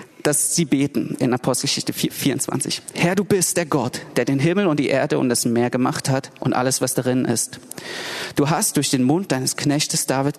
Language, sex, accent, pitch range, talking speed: German, male, German, 130-165 Hz, 210 wpm